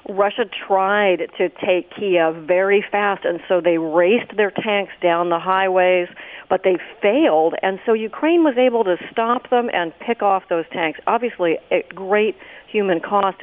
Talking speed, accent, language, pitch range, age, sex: 165 wpm, American, English, 170-205 Hz, 50-69, female